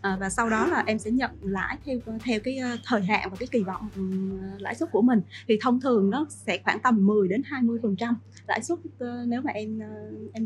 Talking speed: 230 wpm